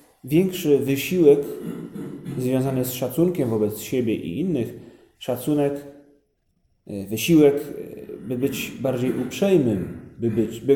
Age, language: 40-59, Polish